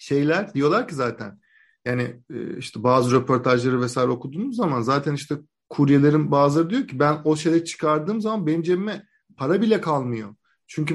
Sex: male